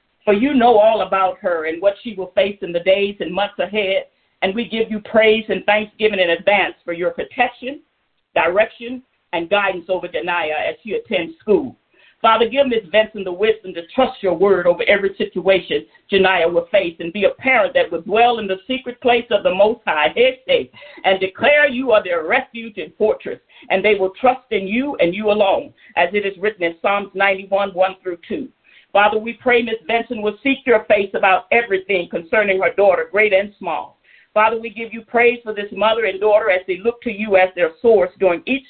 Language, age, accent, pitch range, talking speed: English, 50-69, American, 190-235 Hz, 210 wpm